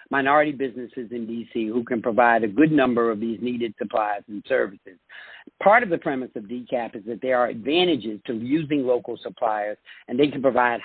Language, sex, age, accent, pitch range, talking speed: English, male, 50-69, American, 115-140 Hz, 195 wpm